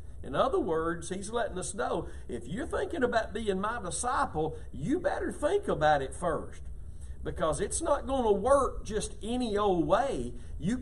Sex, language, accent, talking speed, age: male, English, American, 170 wpm, 50-69